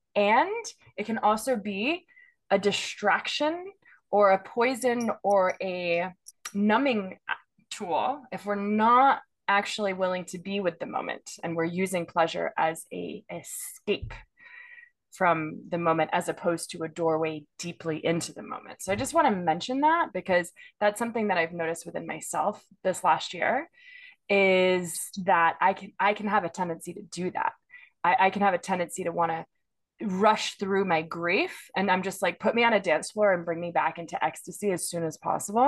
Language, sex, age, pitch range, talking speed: English, female, 20-39, 175-225 Hz, 180 wpm